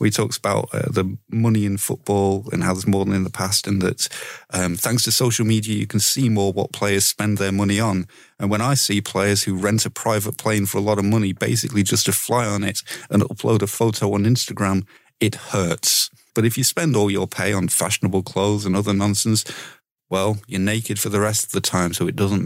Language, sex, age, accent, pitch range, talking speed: English, male, 30-49, British, 100-120 Hz, 230 wpm